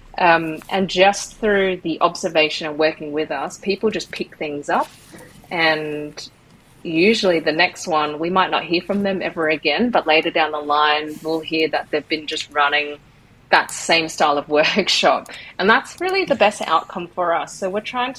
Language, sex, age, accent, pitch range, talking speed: English, female, 30-49, Australian, 150-185 Hz, 185 wpm